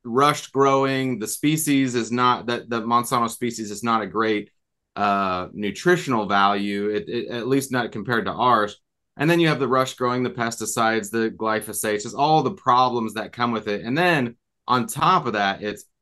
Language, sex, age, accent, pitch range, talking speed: English, male, 30-49, American, 110-130 Hz, 185 wpm